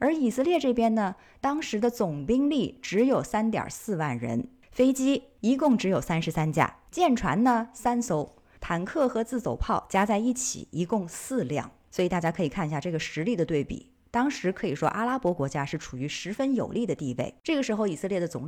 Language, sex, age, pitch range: Chinese, female, 20-39, 155-240 Hz